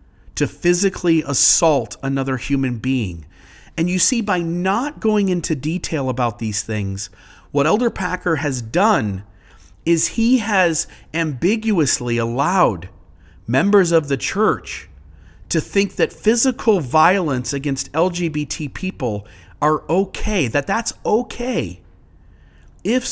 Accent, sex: American, male